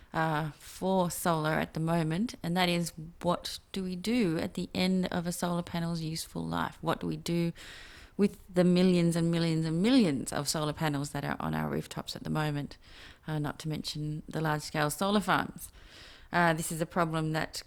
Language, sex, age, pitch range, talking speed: English, female, 30-49, 155-180 Hz, 195 wpm